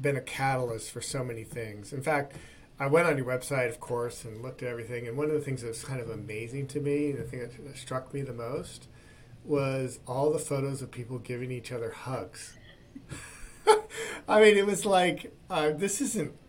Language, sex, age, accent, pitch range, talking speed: English, male, 40-59, American, 115-145 Hz, 200 wpm